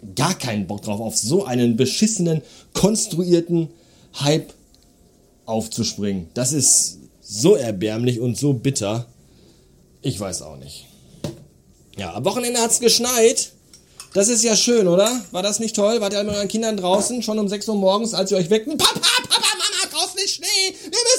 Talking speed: 165 wpm